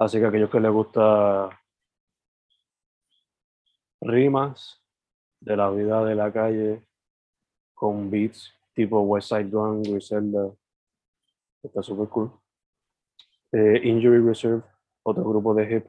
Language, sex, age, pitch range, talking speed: Spanish, male, 20-39, 105-115 Hz, 110 wpm